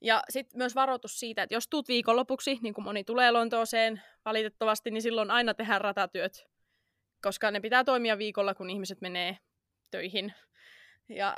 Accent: native